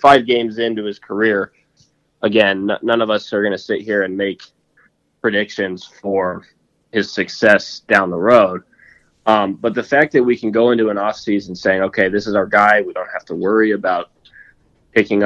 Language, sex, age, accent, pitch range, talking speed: English, male, 20-39, American, 100-115 Hz, 190 wpm